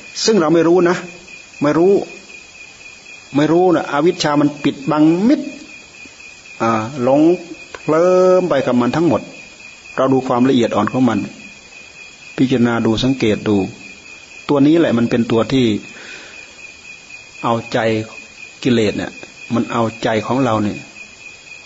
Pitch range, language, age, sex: 115-135 Hz, Thai, 30-49, male